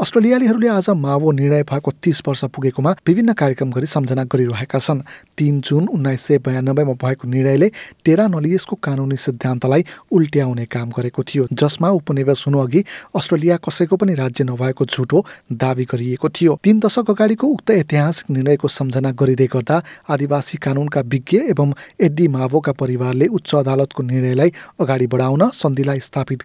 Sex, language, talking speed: male, Hindi, 145 wpm